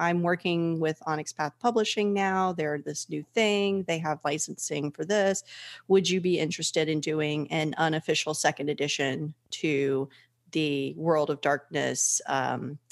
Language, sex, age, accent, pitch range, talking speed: English, female, 30-49, American, 155-185 Hz, 150 wpm